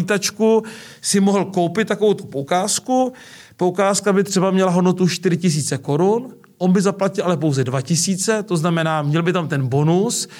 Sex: male